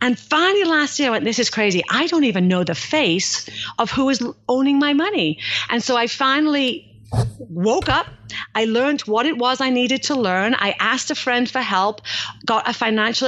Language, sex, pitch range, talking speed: English, female, 200-280 Hz, 205 wpm